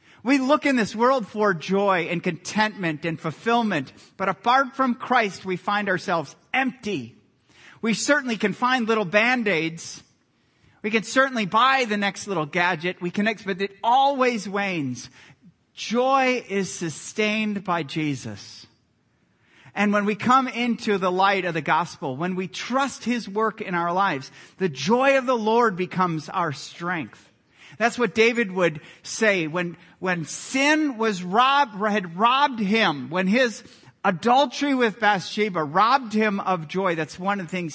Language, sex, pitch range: English, male, 165-225 Hz